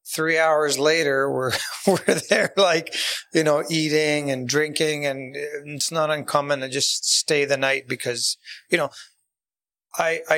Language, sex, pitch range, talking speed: English, male, 135-160 Hz, 145 wpm